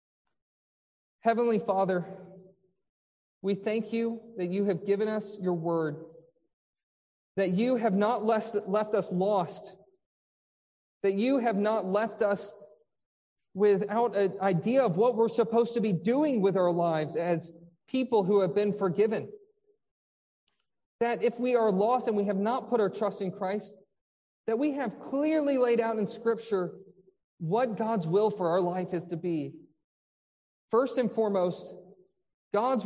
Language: English